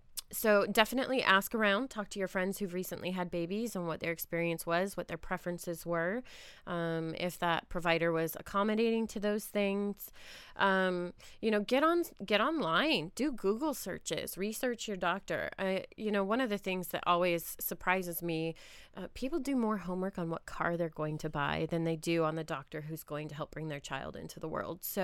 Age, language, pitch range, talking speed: 20-39, English, 170-210 Hz, 200 wpm